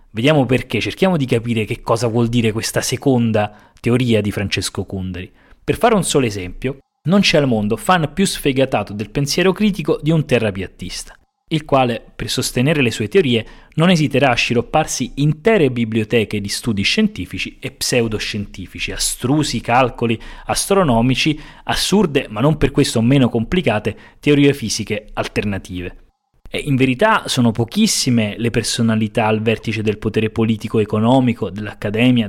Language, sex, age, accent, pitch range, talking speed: Italian, male, 20-39, native, 110-135 Hz, 140 wpm